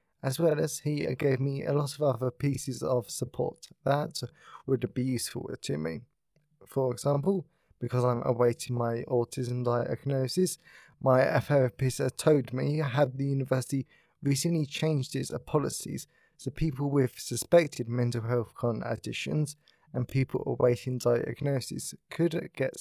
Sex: male